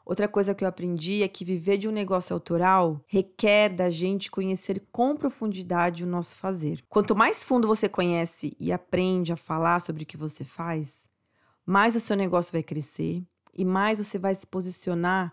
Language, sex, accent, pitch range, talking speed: Portuguese, female, Brazilian, 170-200 Hz, 185 wpm